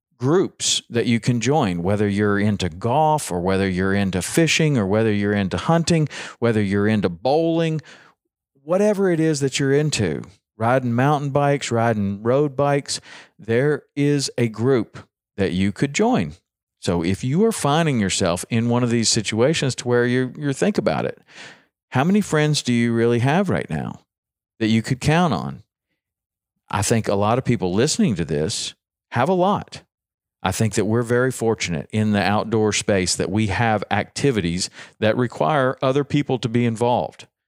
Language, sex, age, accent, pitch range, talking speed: English, male, 40-59, American, 105-130 Hz, 175 wpm